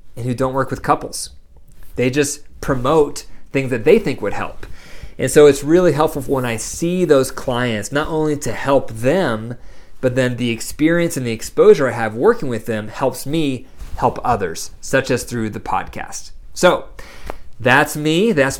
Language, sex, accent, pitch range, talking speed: English, male, American, 125-145 Hz, 175 wpm